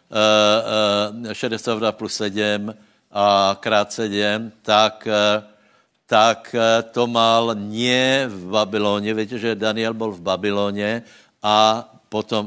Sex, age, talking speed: male, 60-79, 115 wpm